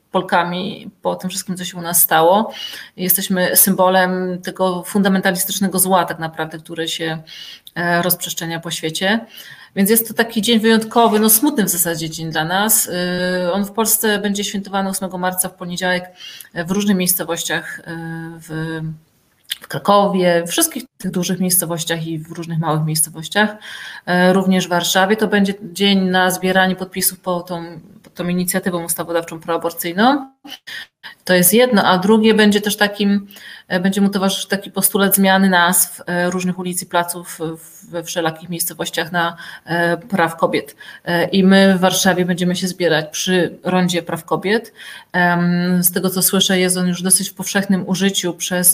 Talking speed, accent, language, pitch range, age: 150 wpm, native, Polish, 175-195 Hz, 30-49